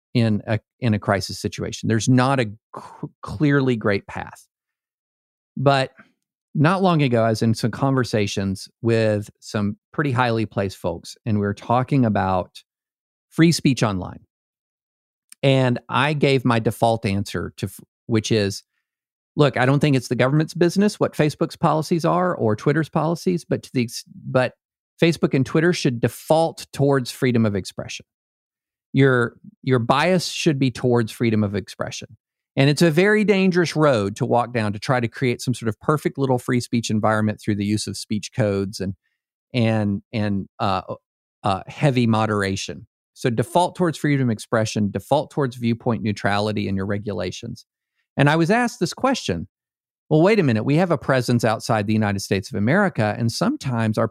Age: 50-69